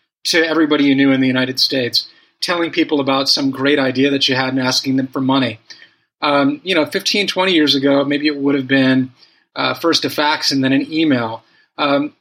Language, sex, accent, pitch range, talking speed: English, male, American, 140-175 Hz, 210 wpm